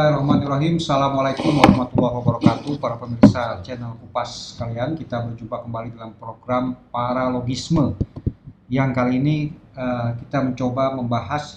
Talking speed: 110 wpm